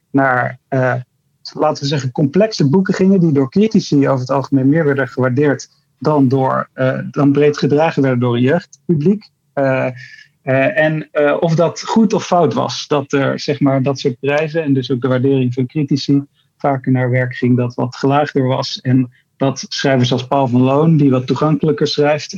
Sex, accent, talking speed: male, Dutch, 180 wpm